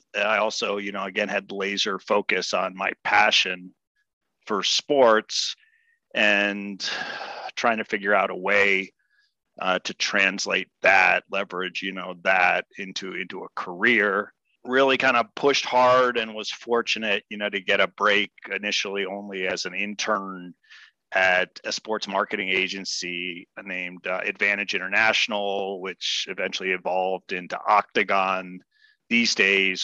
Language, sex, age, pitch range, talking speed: English, male, 40-59, 90-105 Hz, 135 wpm